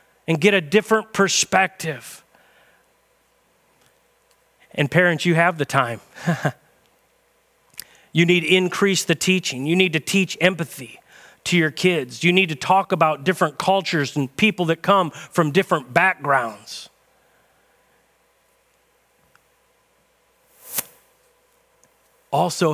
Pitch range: 145-190 Hz